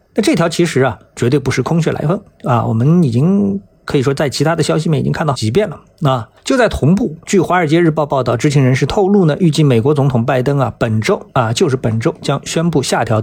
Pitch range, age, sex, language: 125-195 Hz, 50-69, male, Chinese